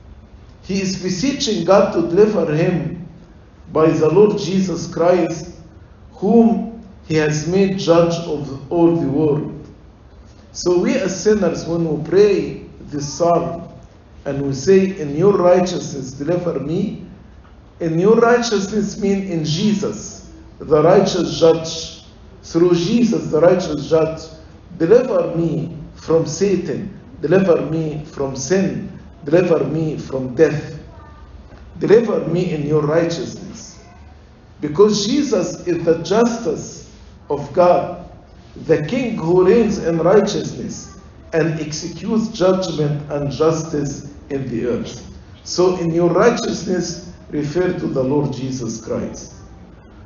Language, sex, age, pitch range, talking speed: English, male, 50-69, 150-195 Hz, 120 wpm